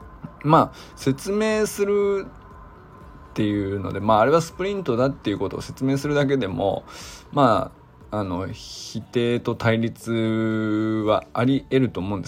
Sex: male